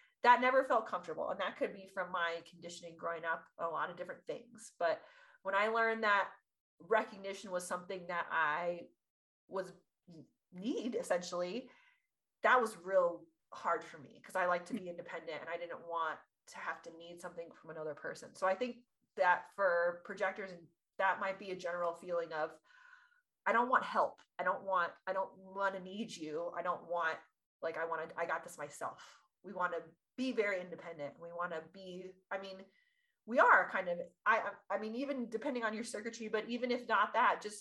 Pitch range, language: 170-220 Hz, English